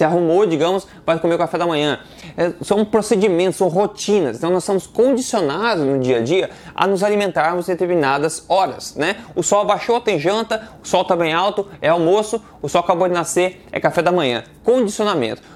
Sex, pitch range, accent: male, 160-205 Hz, Brazilian